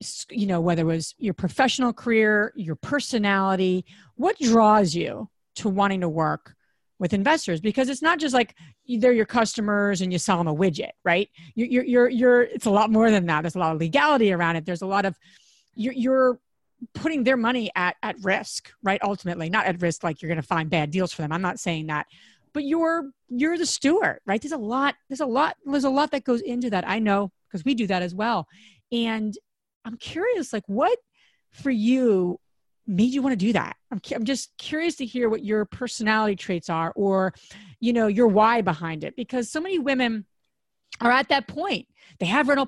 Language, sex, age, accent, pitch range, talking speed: English, female, 40-59, American, 185-250 Hz, 210 wpm